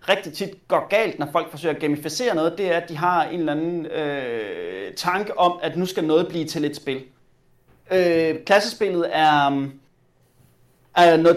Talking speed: 180 wpm